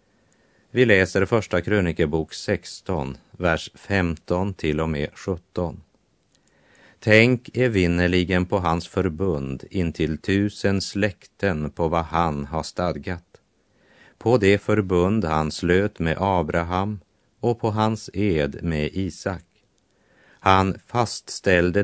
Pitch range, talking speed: 85-105 Hz, 110 wpm